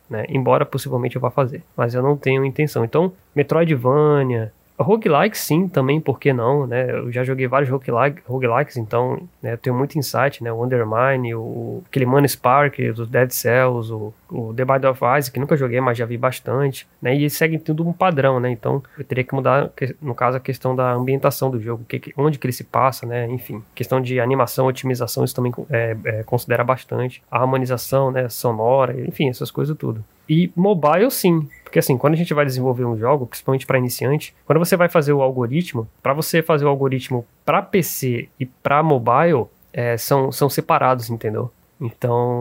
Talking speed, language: 195 wpm, Portuguese